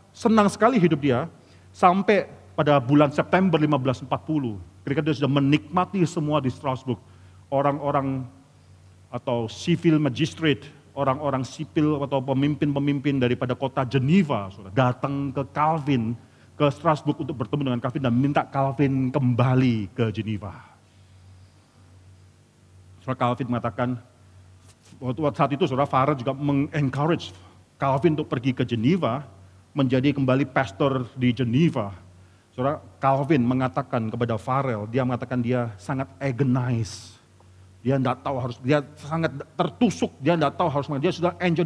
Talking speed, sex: 125 wpm, male